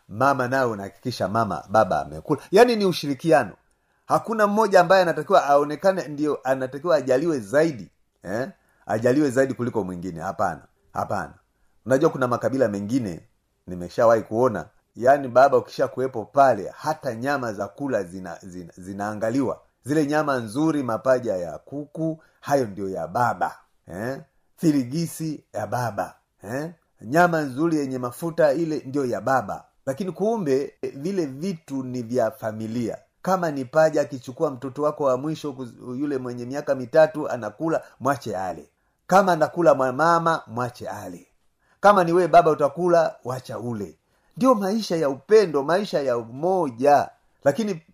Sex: male